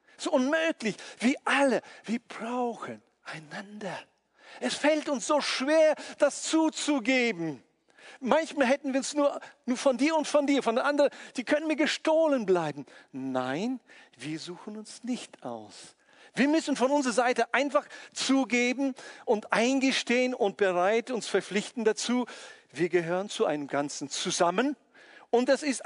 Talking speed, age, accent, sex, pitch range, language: 145 wpm, 50-69, German, male, 200-280 Hz, German